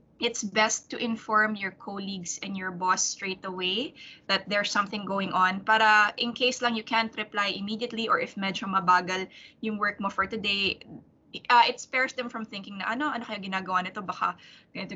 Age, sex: 20-39, female